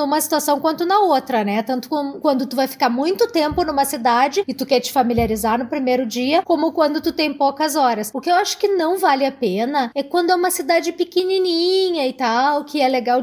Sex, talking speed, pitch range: female, 220 wpm, 255-320 Hz